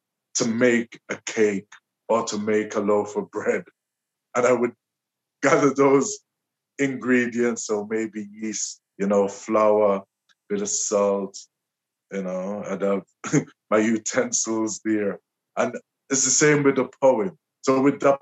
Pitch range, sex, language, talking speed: 105-130 Hz, male, English, 145 wpm